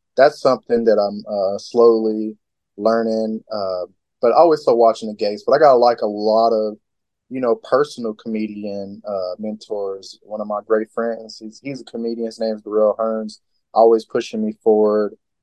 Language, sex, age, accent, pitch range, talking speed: English, male, 20-39, American, 105-115 Hz, 175 wpm